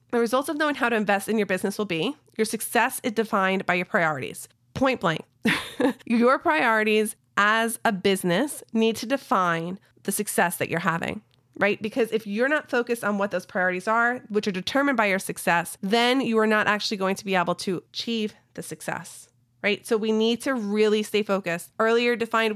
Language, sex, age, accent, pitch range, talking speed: English, female, 30-49, American, 190-230 Hz, 195 wpm